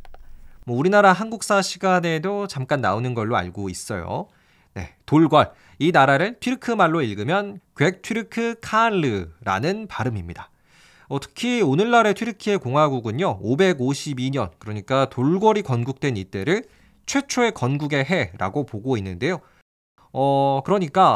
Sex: male